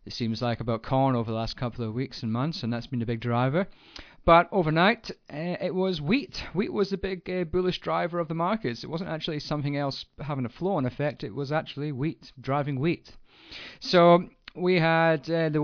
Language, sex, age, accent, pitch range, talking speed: English, male, 30-49, British, 130-165 Hz, 215 wpm